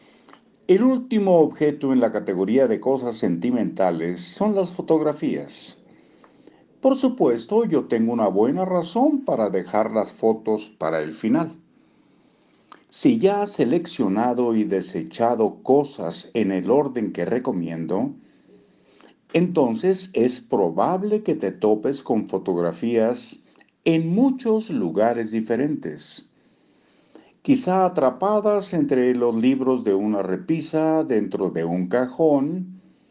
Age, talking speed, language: 60-79, 110 wpm, Spanish